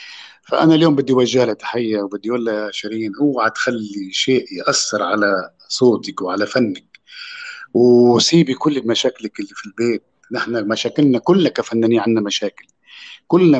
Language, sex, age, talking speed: Arabic, male, 50-69, 135 wpm